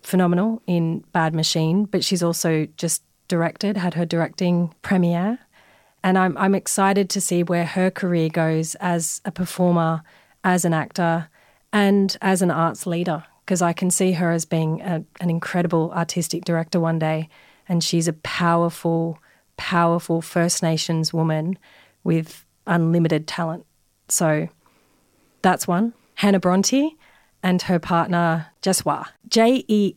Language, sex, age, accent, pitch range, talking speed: English, female, 30-49, Australian, 165-185 Hz, 140 wpm